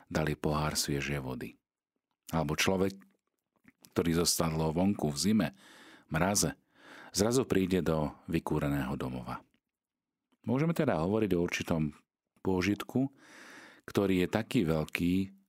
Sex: male